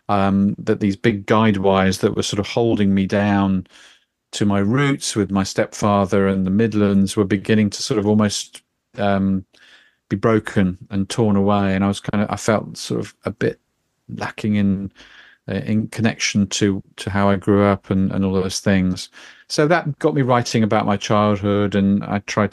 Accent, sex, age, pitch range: British, male, 40-59, 100-115 Hz